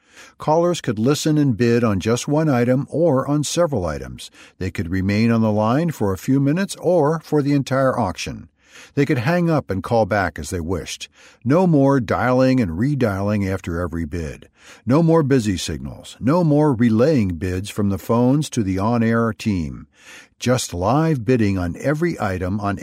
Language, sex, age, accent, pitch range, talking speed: English, male, 60-79, American, 100-140 Hz, 180 wpm